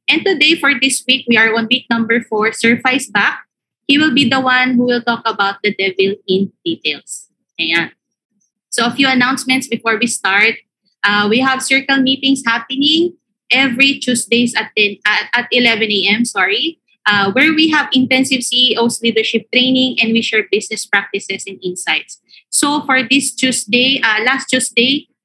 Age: 20-39